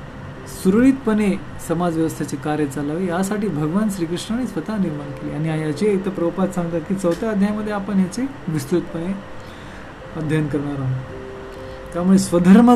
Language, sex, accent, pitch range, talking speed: Marathi, male, native, 155-195 Hz, 95 wpm